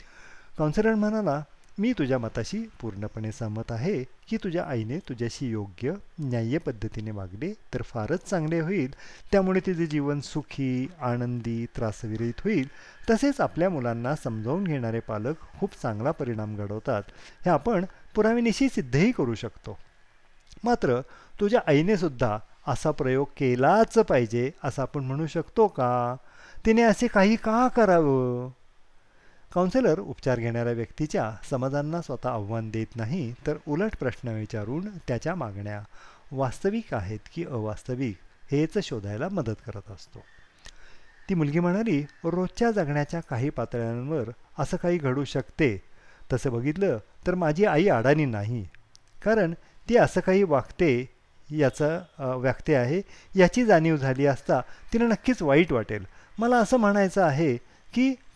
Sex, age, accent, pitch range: male, 40-59, native, 120-185 Hz